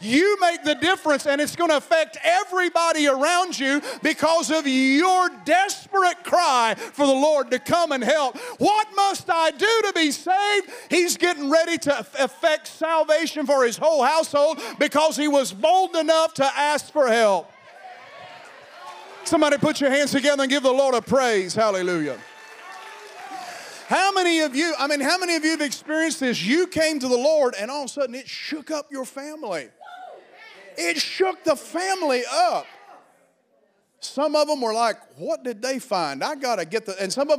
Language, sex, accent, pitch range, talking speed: English, male, American, 250-320 Hz, 180 wpm